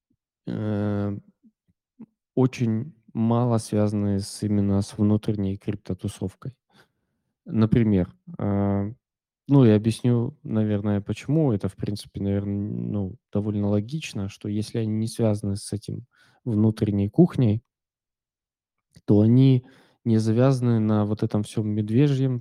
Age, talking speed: 20-39, 100 wpm